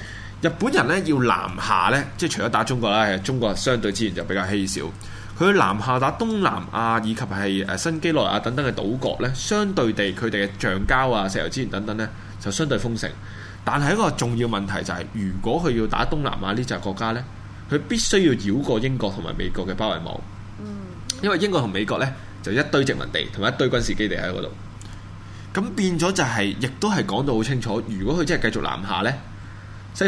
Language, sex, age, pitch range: Chinese, male, 20-39, 100-130 Hz